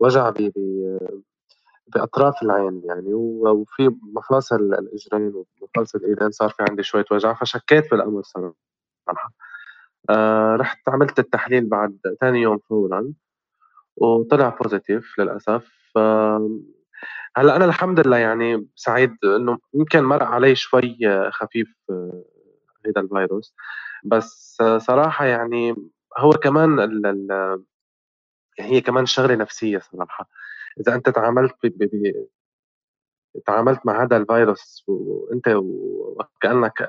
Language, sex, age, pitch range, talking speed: Arabic, male, 20-39, 105-135 Hz, 110 wpm